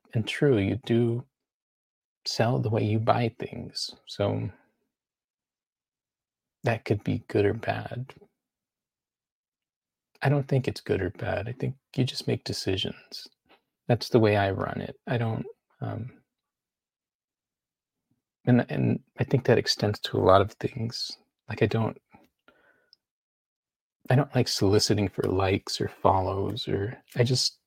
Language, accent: English, American